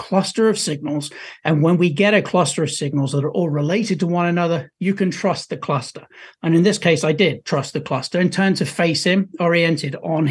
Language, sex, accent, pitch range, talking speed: English, male, British, 155-195 Hz, 225 wpm